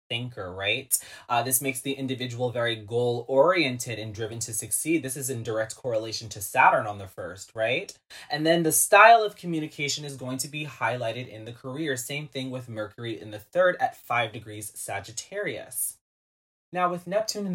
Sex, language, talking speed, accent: male, English, 180 wpm, American